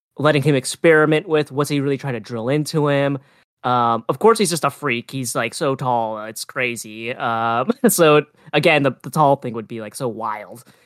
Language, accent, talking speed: English, American, 205 wpm